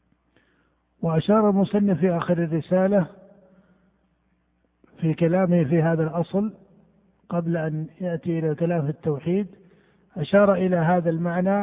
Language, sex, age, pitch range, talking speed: Arabic, male, 50-69, 165-195 Hz, 105 wpm